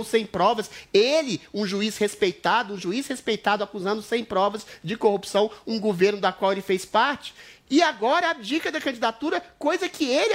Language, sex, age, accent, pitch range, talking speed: Portuguese, male, 30-49, Brazilian, 230-310 Hz, 170 wpm